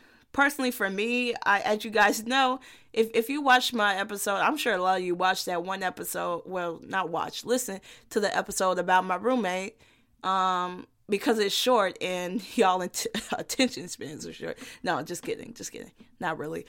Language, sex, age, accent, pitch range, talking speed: English, female, 20-39, American, 195-250 Hz, 185 wpm